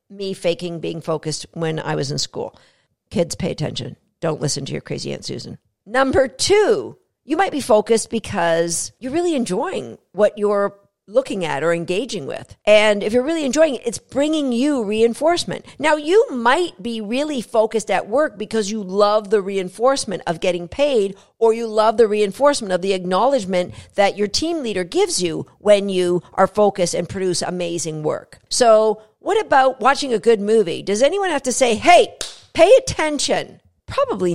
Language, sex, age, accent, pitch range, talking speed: English, female, 50-69, American, 185-270 Hz, 175 wpm